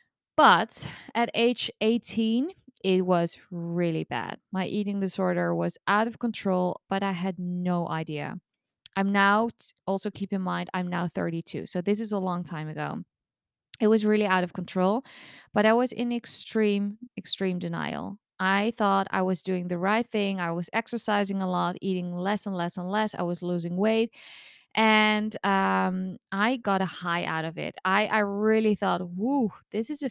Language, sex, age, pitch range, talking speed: English, female, 20-39, 180-225 Hz, 175 wpm